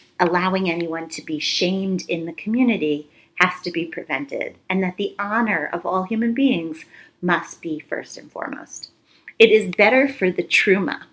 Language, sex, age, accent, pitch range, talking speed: English, female, 30-49, American, 165-230 Hz, 165 wpm